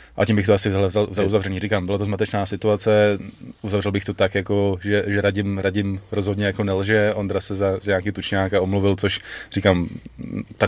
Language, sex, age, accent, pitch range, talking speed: Czech, male, 20-39, native, 100-110 Hz, 190 wpm